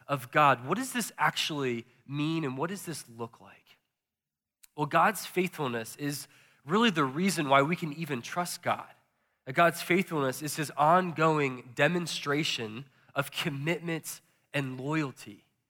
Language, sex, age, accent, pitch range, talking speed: English, male, 20-39, American, 135-165 Hz, 140 wpm